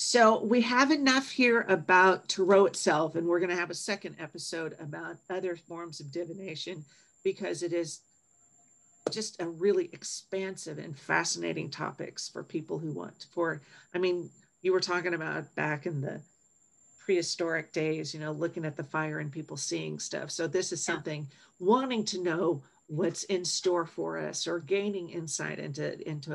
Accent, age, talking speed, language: American, 50-69, 170 wpm, English